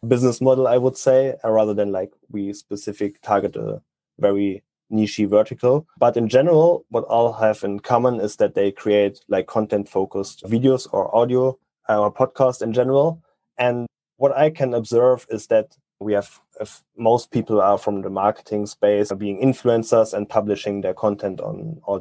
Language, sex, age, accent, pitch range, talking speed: English, male, 20-39, German, 100-120 Hz, 170 wpm